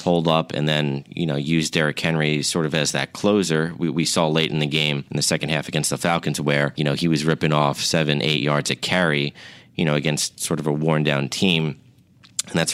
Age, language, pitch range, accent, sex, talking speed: 30-49, English, 75-85 Hz, American, male, 240 wpm